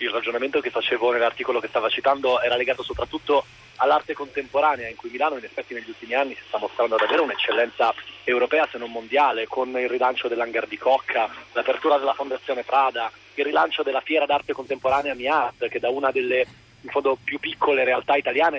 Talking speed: 185 wpm